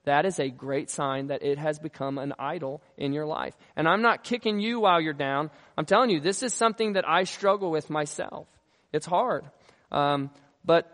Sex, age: male, 20-39